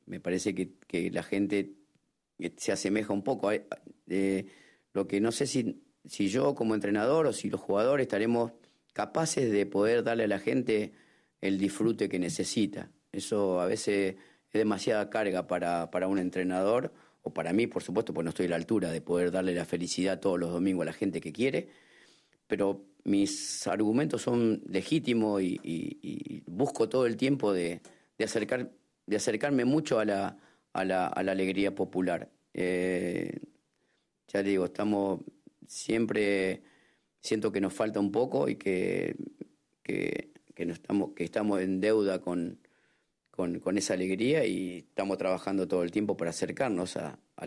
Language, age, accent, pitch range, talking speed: French, 40-59, Argentinian, 90-110 Hz, 165 wpm